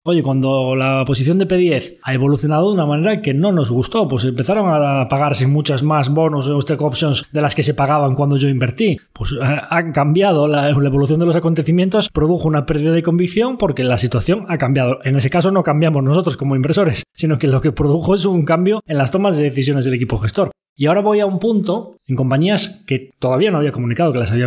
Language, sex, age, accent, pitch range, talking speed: Spanish, male, 20-39, Spanish, 130-170 Hz, 220 wpm